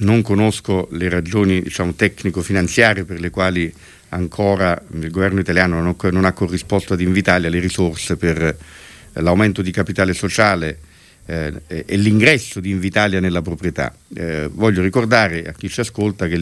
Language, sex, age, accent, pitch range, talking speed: Italian, male, 50-69, native, 90-110 Hz, 145 wpm